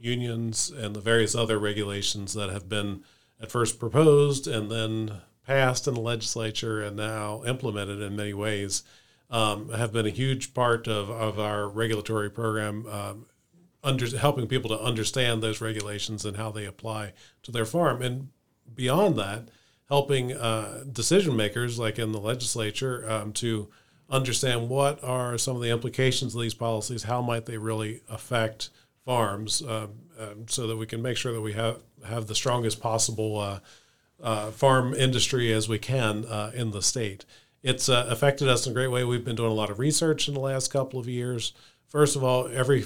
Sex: male